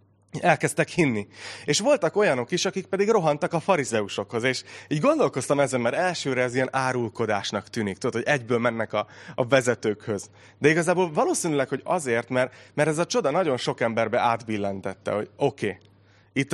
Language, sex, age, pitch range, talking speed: Hungarian, male, 30-49, 105-145 Hz, 160 wpm